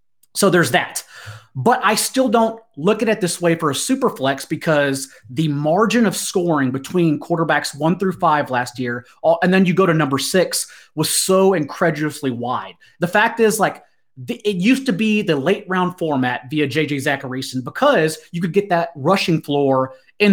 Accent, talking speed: American, 185 wpm